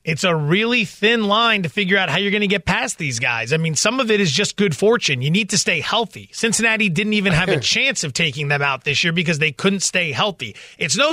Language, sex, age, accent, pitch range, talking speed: English, male, 30-49, American, 170-225 Hz, 265 wpm